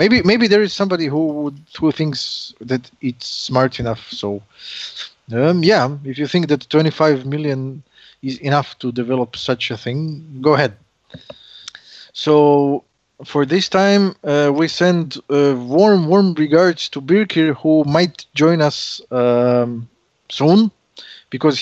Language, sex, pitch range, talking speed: English, male, 125-155 Hz, 140 wpm